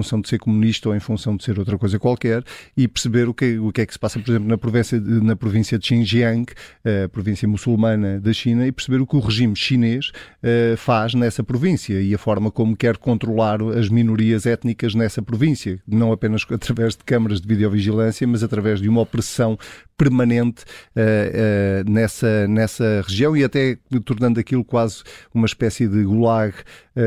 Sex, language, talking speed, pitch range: male, Portuguese, 175 wpm, 110-130 Hz